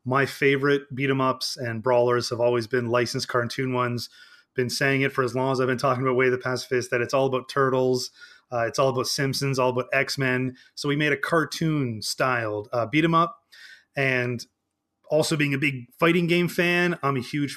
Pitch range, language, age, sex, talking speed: 125-150 Hz, English, 30-49, male, 190 wpm